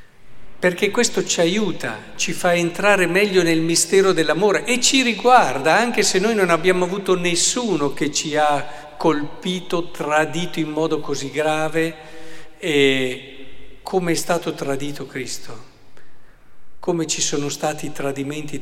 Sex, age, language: male, 50-69, Italian